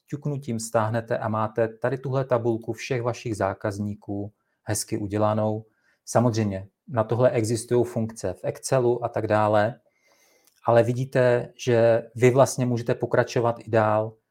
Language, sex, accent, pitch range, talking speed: Czech, male, Slovak, 110-130 Hz, 130 wpm